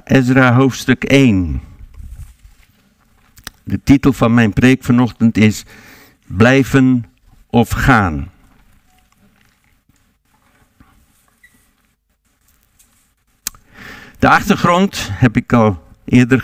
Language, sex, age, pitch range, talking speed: Dutch, male, 60-79, 110-135 Hz, 70 wpm